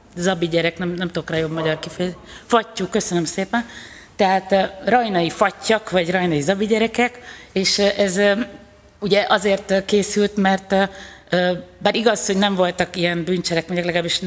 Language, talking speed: Hungarian, 145 wpm